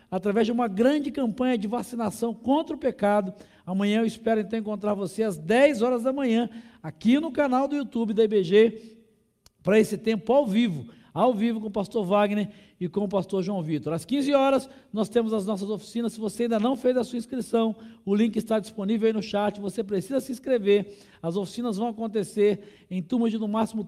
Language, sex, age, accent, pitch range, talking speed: Portuguese, male, 50-69, Brazilian, 205-245 Hz, 200 wpm